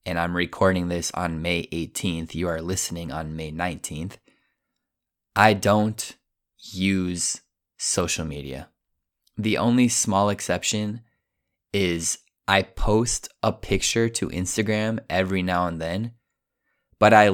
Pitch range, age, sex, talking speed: 90-105 Hz, 20-39, male, 120 wpm